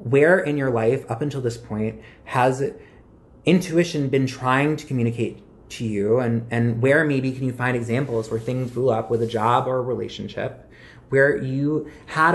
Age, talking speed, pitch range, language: 20-39, 180 wpm, 115-140 Hz, English